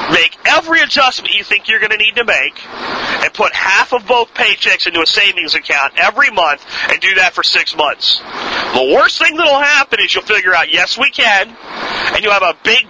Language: English